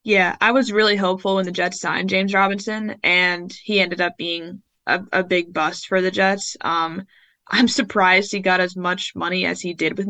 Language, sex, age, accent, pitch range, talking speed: English, female, 10-29, American, 180-210 Hz, 210 wpm